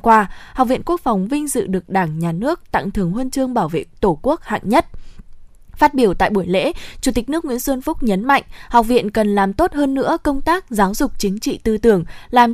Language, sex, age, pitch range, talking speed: Vietnamese, female, 20-39, 195-265 Hz, 240 wpm